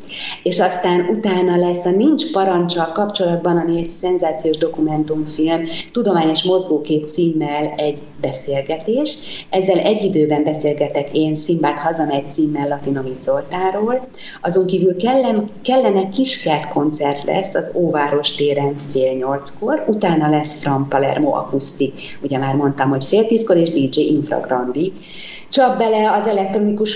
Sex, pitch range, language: female, 150-180 Hz, Hungarian